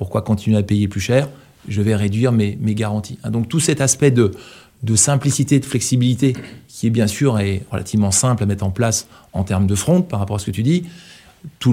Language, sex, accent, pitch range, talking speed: French, male, French, 110-130 Hz, 220 wpm